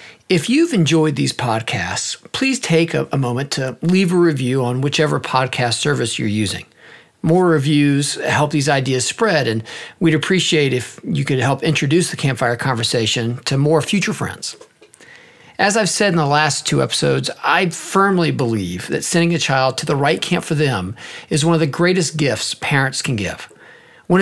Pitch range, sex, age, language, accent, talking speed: 125-175 Hz, male, 50-69, English, American, 180 wpm